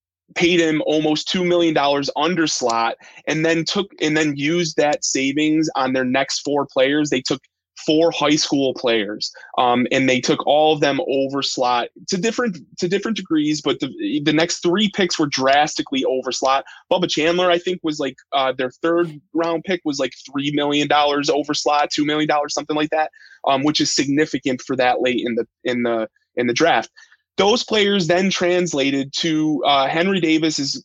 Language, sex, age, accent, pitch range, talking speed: English, male, 20-39, American, 130-165 Hz, 185 wpm